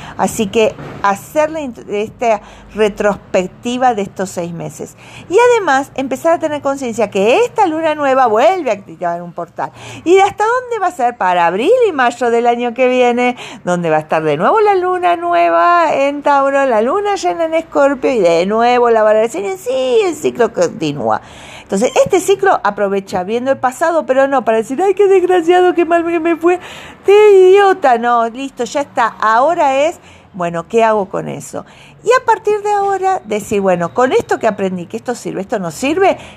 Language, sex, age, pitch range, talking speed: Spanish, female, 40-59, 225-370 Hz, 185 wpm